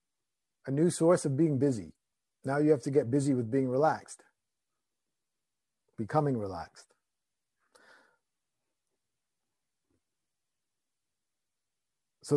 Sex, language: male, English